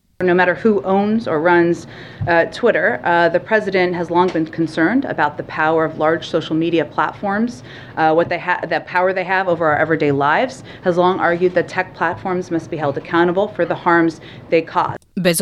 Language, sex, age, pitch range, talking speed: Croatian, female, 30-49, 160-220 Hz, 200 wpm